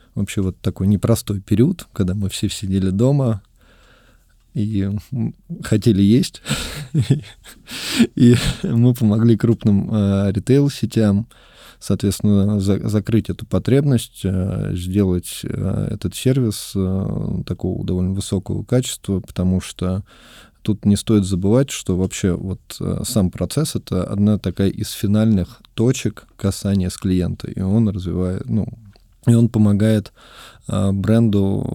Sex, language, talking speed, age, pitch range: male, Russian, 120 wpm, 20-39, 95-115 Hz